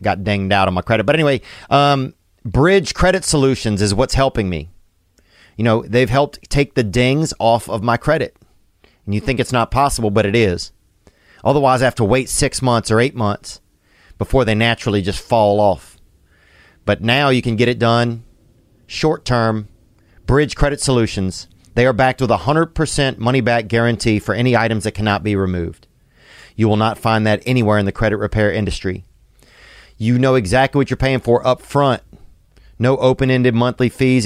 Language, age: English, 40-59